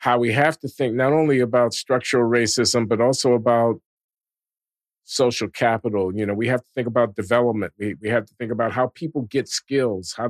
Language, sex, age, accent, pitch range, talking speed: English, male, 50-69, American, 115-135 Hz, 200 wpm